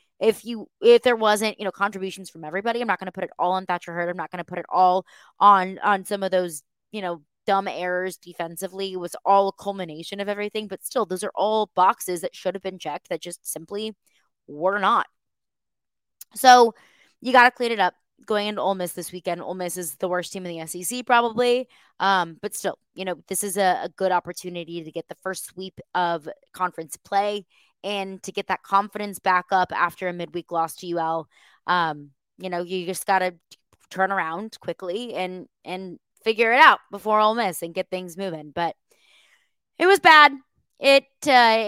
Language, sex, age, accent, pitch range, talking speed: English, female, 20-39, American, 175-210 Hz, 205 wpm